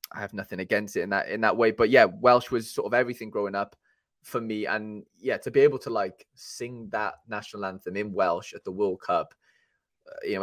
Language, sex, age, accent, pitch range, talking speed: English, male, 20-39, British, 110-140 Hz, 235 wpm